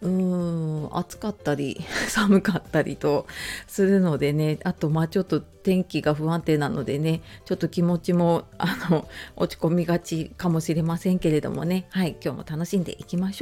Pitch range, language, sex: 160-230 Hz, Japanese, female